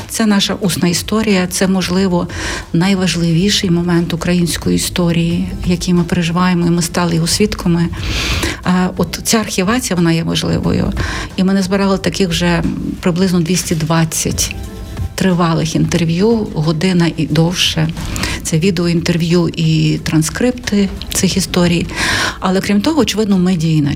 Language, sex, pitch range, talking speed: Ukrainian, female, 170-210 Hz, 120 wpm